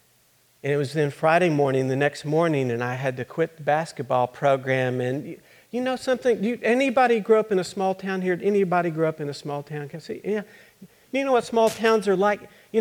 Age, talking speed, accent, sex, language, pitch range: 50-69, 230 wpm, American, male, English, 135-220 Hz